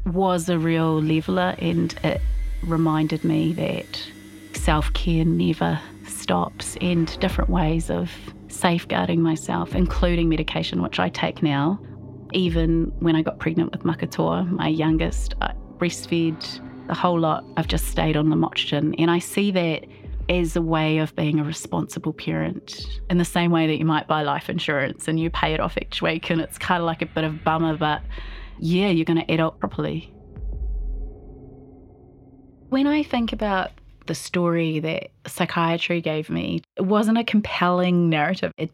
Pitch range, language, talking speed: 155-175 Hz, English, 165 wpm